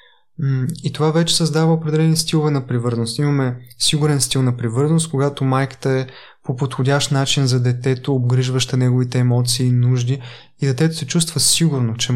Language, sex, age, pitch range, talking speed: Bulgarian, male, 20-39, 130-150 Hz, 160 wpm